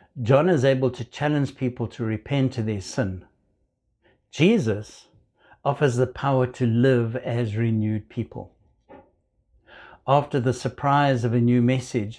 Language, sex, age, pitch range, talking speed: English, male, 60-79, 110-130 Hz, 135 wpm